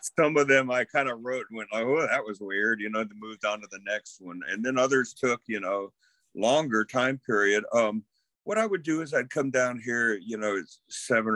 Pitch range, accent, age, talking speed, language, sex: 95-120 Hz, American, 50-69, 230 wpm, English, male